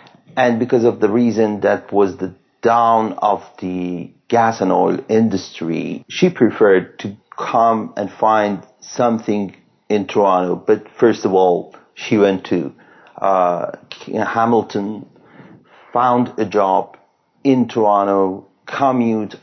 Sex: male